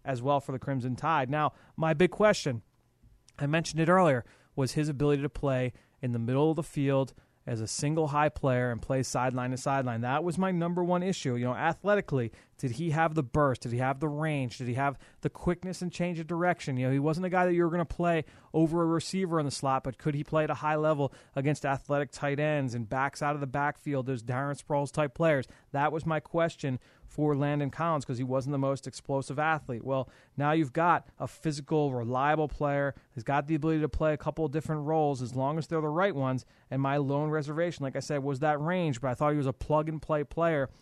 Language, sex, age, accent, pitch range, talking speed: English, male, 30-49, American, 135-155 Hz, 240 wpm